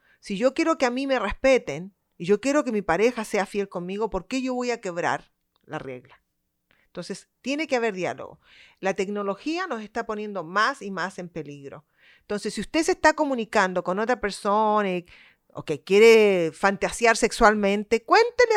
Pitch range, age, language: 175-225 Hz, 40-59, Spanish